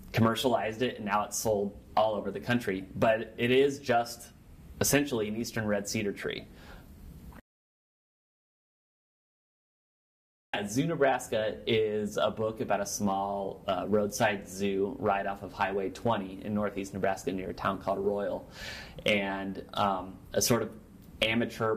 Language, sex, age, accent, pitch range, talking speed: English, male, 30-49, American, 95-110 Hz, 140 wpm